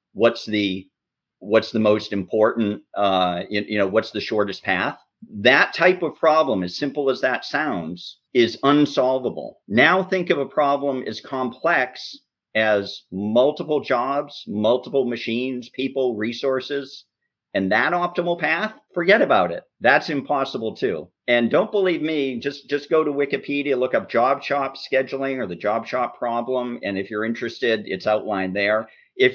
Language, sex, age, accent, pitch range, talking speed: English, male, 50-69, American, 105-145 Hz, 155 wpm